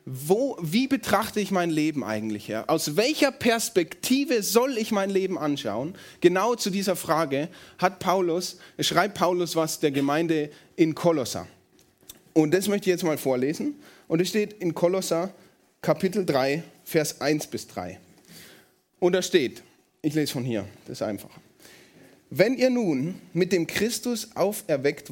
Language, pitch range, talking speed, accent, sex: German, 145-200 Hz, 155 wpm, German, male